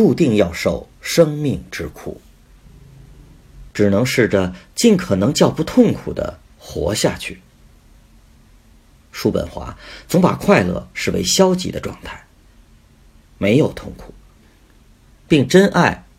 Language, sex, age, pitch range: Chinese, male, 50-69, 85-120 Hz